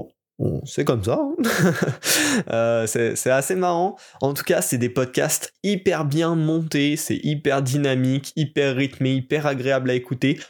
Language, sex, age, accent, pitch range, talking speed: French, male, 20-39, French, 125-150 Hz, 160 wpm